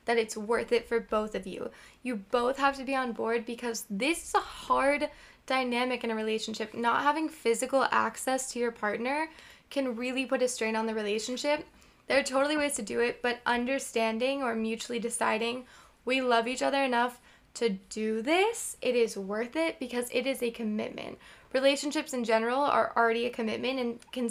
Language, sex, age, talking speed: English, female, 10-29, 190 wpm